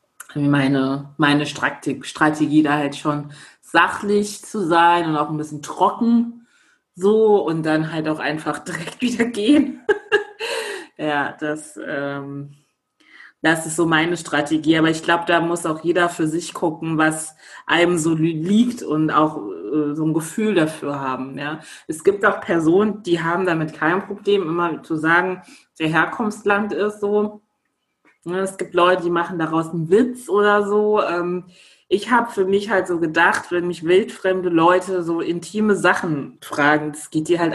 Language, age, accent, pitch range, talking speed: German, 30-49, German, 155-195 Hz, 155 wpm